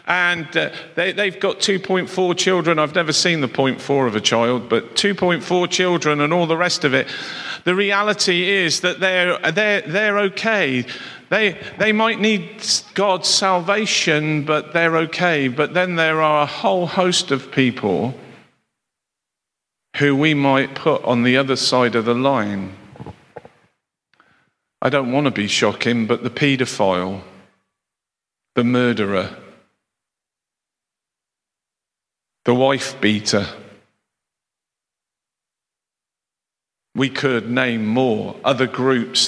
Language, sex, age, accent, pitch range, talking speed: English, male, 50-69, British, 115-175 Hz, 125 wpm